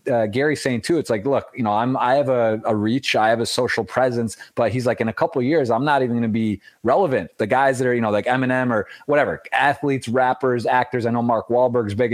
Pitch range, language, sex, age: 115-135 Hz, English, male, 30-49